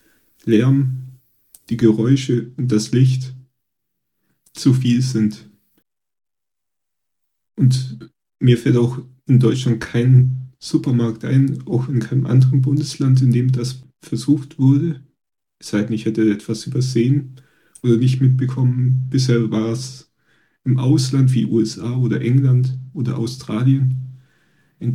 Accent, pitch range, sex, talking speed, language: German, 115-130 Hz, male, 115 wpm, German